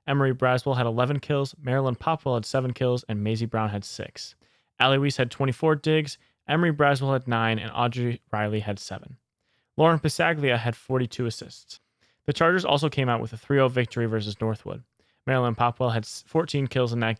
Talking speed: 180 wpm